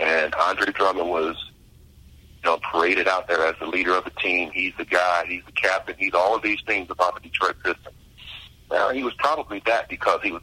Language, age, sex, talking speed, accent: English, 40-59, male, 220 wpm, American